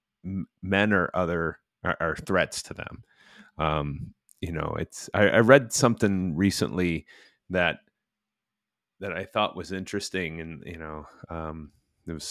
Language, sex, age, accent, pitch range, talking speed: English, male, 30-49, American, 85-100 Hz, 140 wpm